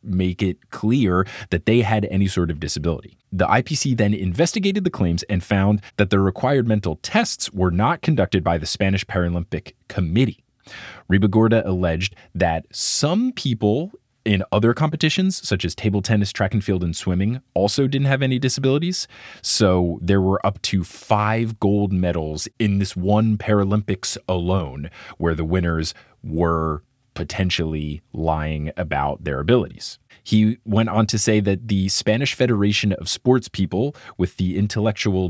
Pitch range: 90-120 Hz